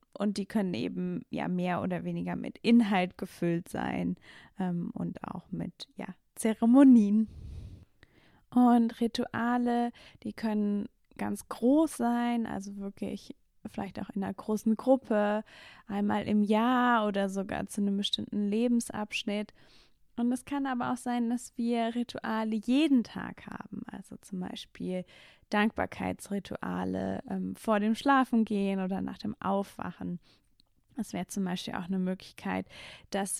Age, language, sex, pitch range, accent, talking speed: 10-29, German, female, 185-235 Hz, German, 135 wpm